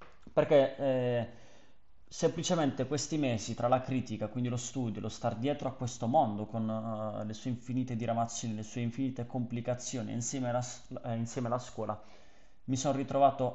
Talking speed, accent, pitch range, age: 160 wpm, native, 110-130 Hz, 20-39